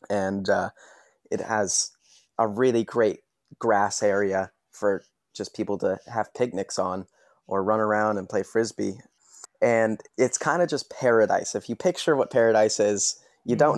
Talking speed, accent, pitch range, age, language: 155 wpm, American, 105-120 Hz, 20-39, English